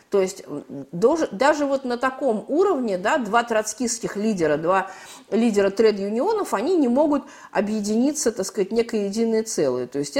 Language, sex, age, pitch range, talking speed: Russian, female, 50-69, 200-270 Hz, 145 wpm